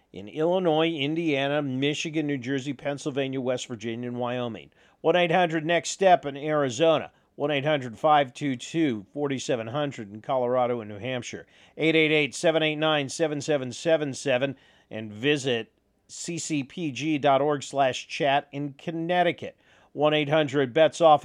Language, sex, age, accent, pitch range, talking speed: English, male, 40-59, American, 130-160 Hz, 80 wpm